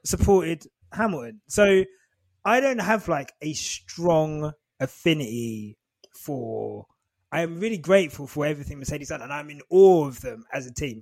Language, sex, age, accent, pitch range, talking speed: English, male, 20-39, British, 120-160 Hz, 150 wpm